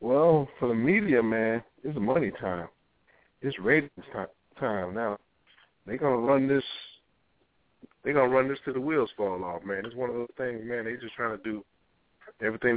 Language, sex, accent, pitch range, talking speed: English, male, American, 110-145 Hz, 180 wpm